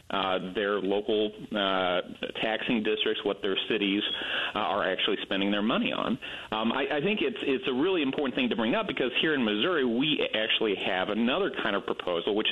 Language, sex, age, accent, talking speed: English, male, 40-59, American, 195 wpm